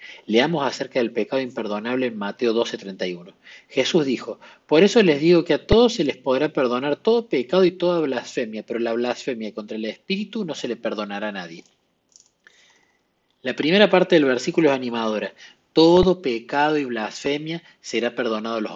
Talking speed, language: 170 wpm, Spanish